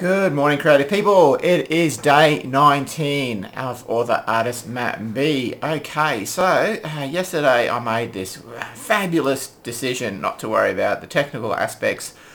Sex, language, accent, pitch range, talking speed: male, English, Australian, 105-130 Hz, 145 wpm